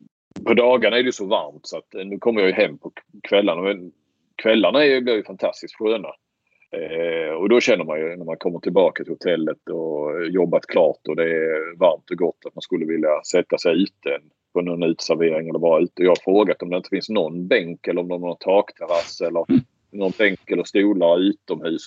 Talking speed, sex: 210 wpm, male